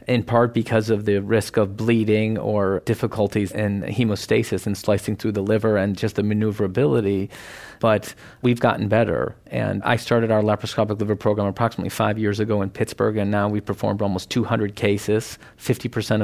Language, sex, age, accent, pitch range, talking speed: English, male, 40-59, American, 100-115 Hz, 170 wpm